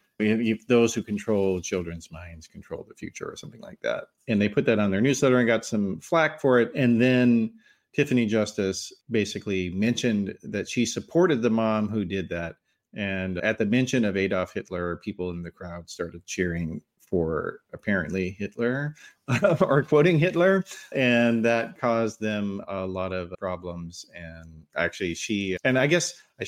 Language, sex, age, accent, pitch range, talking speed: English, male, 30-49, American, 95-125 Hz, 165 wpm